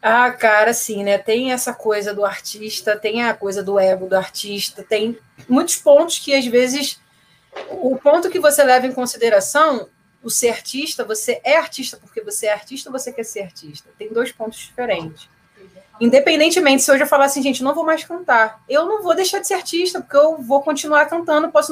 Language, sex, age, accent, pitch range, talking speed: Portuguese, female, 30-49, Brazilian, 220-290 Hz, 200 wpm